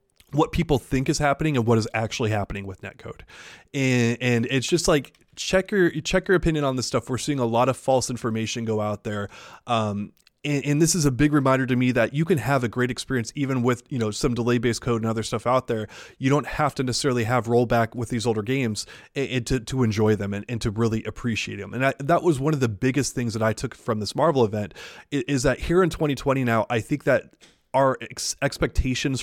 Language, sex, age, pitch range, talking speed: English, male, 20-39, 120-150 Hz, 235 wpm